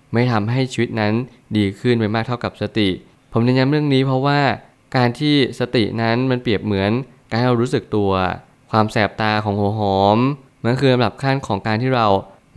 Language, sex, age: Thai, male, 20-39